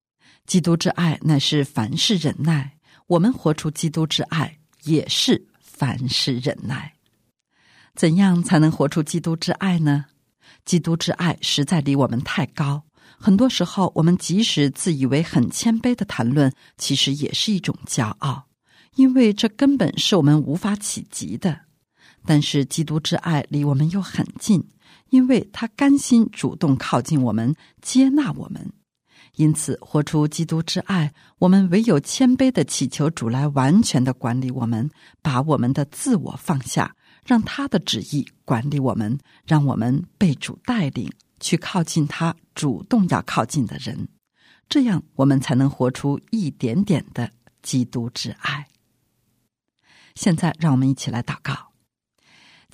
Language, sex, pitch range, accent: Chinese, female, 140-180 Hz, native